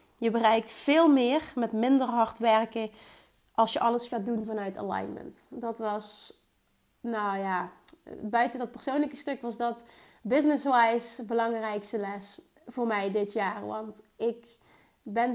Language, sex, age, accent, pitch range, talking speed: Dutch, female, 30-49, Dutch, 215-260 Hz, 135 wpm